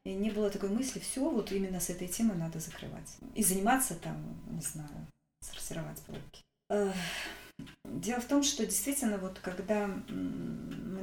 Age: 30-49